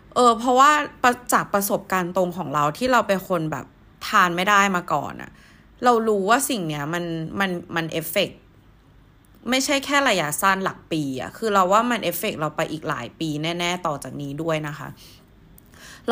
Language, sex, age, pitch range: Thai, female, 20-39, 165-230 Hz